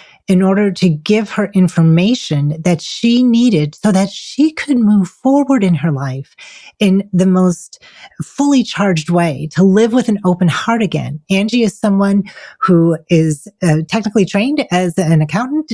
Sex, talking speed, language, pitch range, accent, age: female, 160 wpm, English, 170-215 Hz, American, 40-59